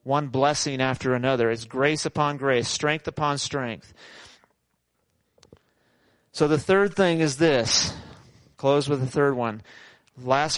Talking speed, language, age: 130 wpm, English, 40-59